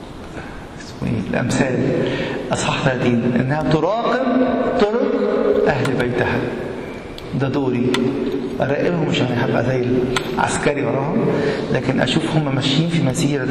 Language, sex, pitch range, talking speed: English, male, 125-150 Hz, 100 wpm